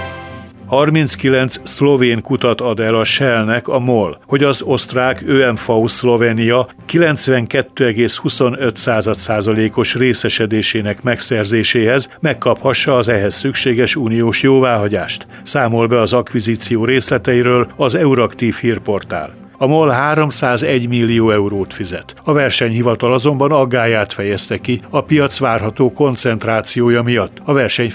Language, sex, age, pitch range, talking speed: Hungarian, male, 60-79, 110-130 Hz, 110 wpm